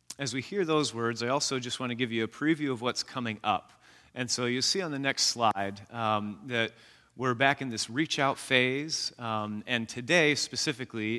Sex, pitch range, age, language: male, 115-155 Hz, 30-49, English